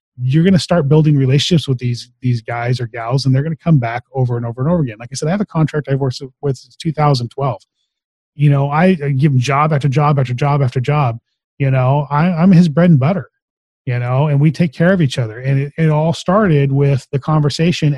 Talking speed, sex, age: 240 wpm, male, 30-49